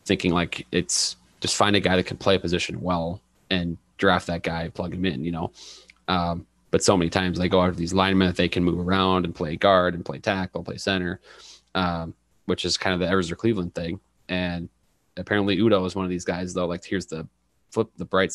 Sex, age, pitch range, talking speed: male, 30-49, 85-95 Hz, 230 wpm